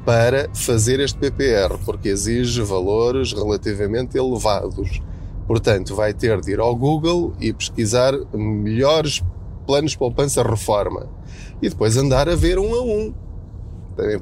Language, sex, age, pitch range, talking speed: Portuguese, male, 20-39, 105-140 Hz, 130 wpm